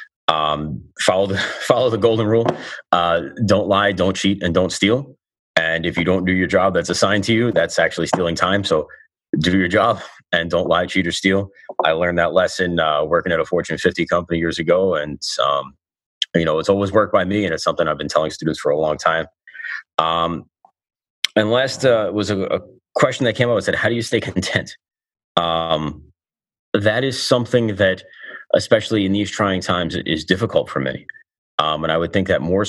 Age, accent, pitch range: 30-49, American, 80-100 Hz